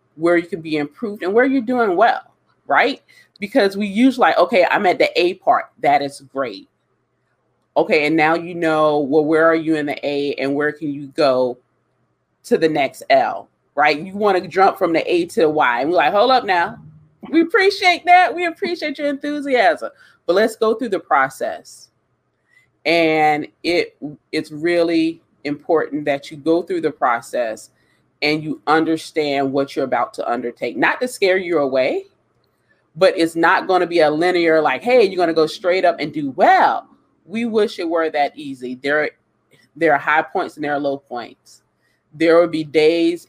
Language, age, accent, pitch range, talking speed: English, 30-49, American, 145-225 Hz, 190 wpm